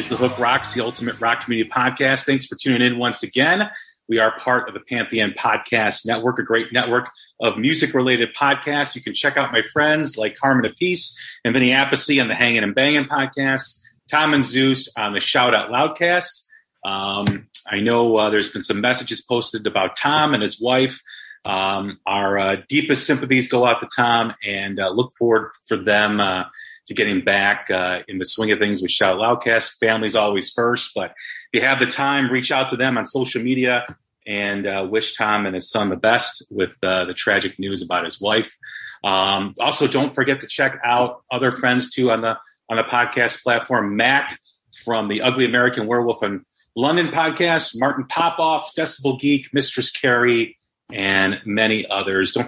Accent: American